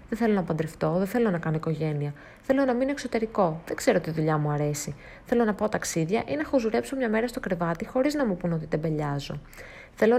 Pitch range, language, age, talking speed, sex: 165-220 Hz, Greek, 30-49, 220 wpm, female